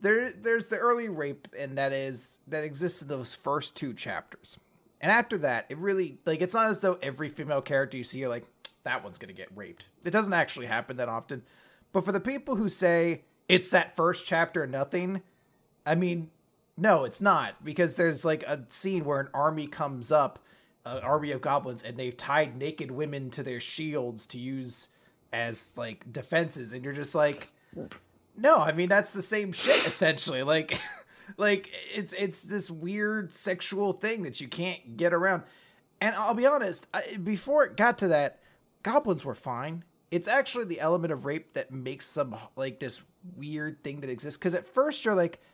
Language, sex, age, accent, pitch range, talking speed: English, male, 30-49, American, 130-185 Hz, 190 wpm